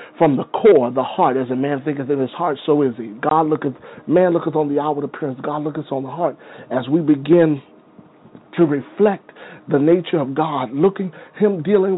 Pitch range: 140-175 Hz